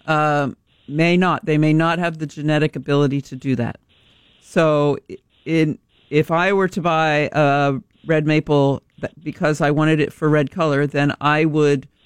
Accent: American